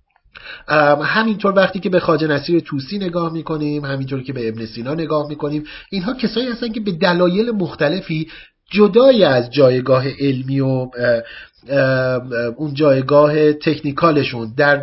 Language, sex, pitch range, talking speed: Persian, male, 140-175 Hz, 135 wpm